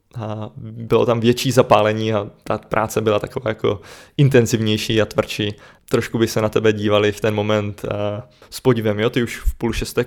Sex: male